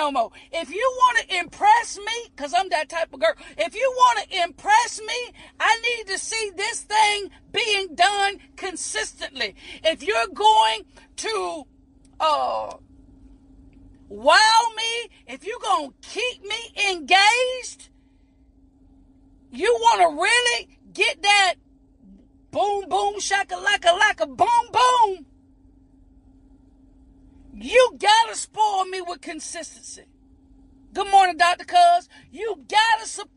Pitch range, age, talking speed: 315-430 Hz, 40-59, 120 wpm